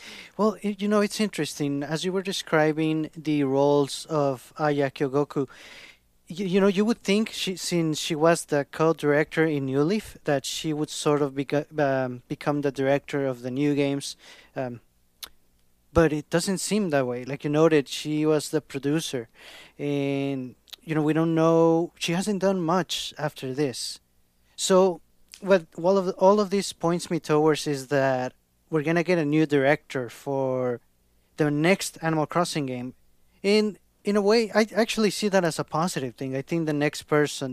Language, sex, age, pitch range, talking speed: English, male, 30-49, 140-165 Hz, 180 wpm